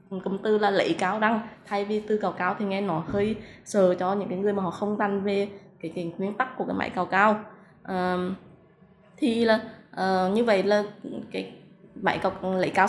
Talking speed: 215 wpm